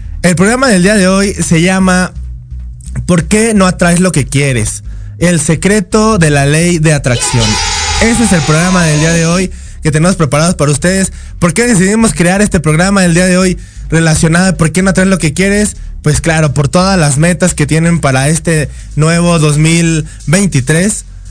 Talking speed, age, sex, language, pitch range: 185 wpm, 20-39, male, Spanish, 145-185 Hz